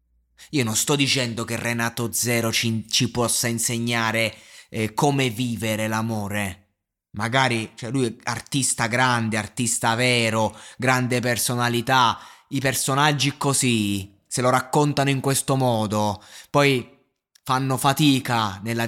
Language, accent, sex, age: Italian, native, male, 20-39